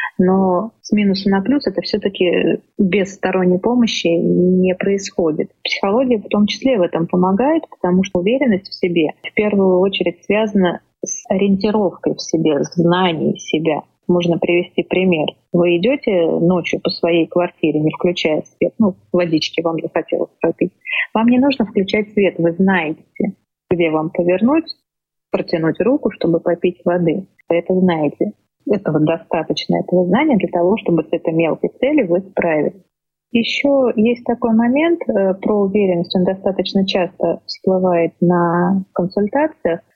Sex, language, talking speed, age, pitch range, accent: female, Russian, 140 wpm, 20-39, 175-210 Hz, native